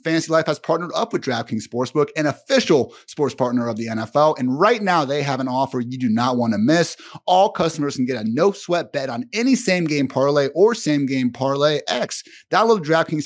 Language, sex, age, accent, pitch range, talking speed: English, male, 30-49, American, 130-180 Hz, 210 wpm